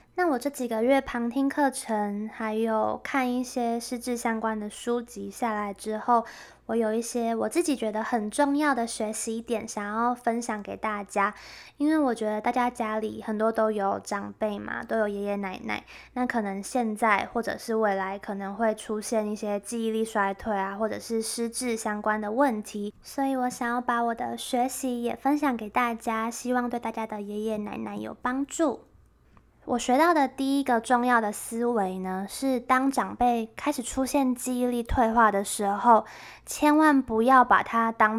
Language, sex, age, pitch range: Chinese, female, 10-29, 215-260 Hz